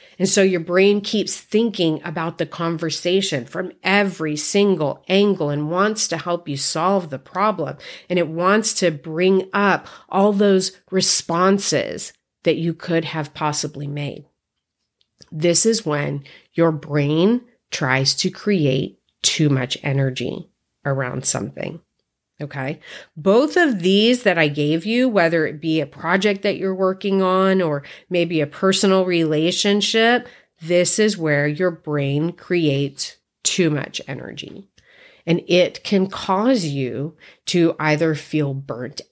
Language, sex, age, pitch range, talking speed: English, female, 40-59, 150-195 Hz, 135 wpm